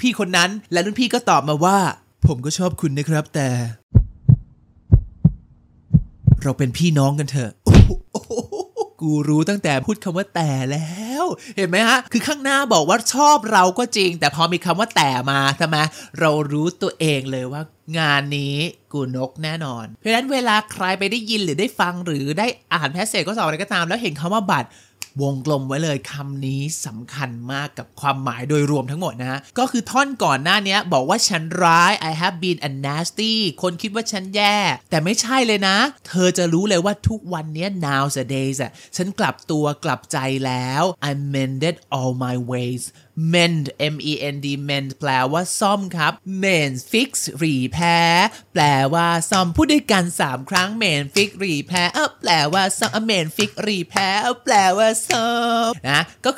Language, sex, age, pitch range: Thai, male, 20-39, 140-205 Hz